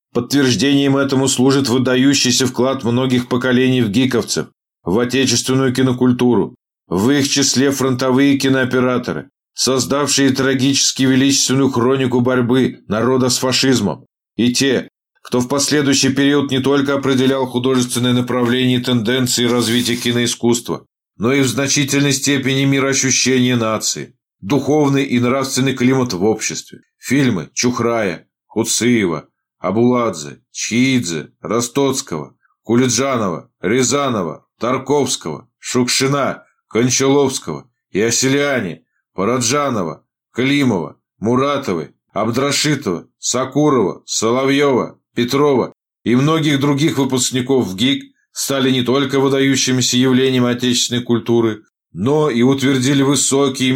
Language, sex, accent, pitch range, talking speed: Russian, male, native, 125-135 Hz, 100 wpm